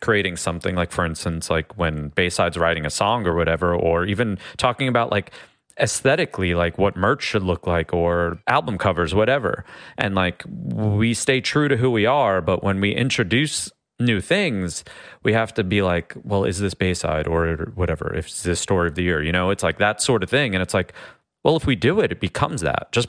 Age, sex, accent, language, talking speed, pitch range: 30-49, male, American, English, 215 wpm, 85-110 Hz